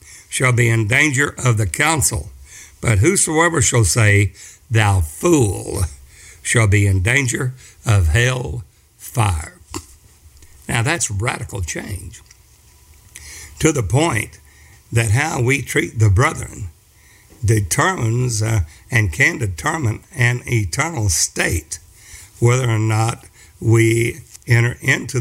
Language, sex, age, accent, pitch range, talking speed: English, male, 60-79, American, 100-130 Hz, 110 wpm